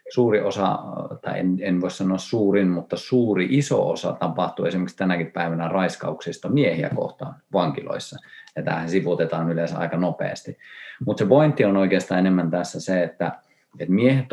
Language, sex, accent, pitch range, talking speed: Finnish, male, native, 85-95 Hz, 150 wpm